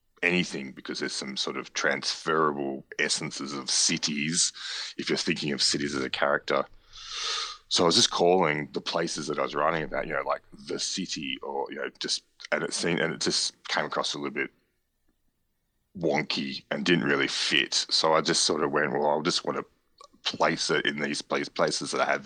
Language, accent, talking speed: English, Australian, 200 wpm